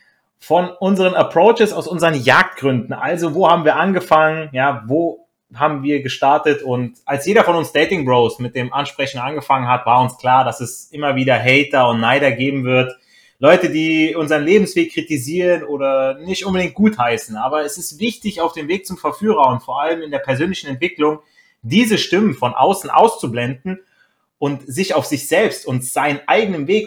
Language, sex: German, male